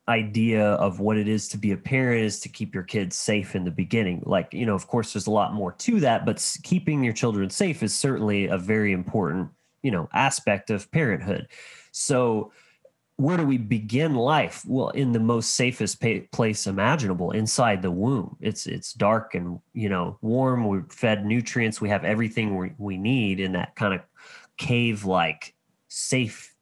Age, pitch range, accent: 30-49, 100-120 Hz, American